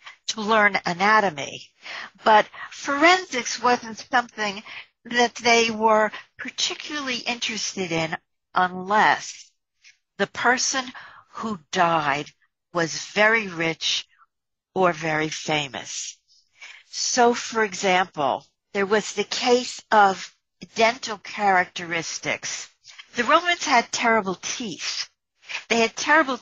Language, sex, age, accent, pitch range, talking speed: English, female, 60-79, American, 185-240 Hz, 95 wpm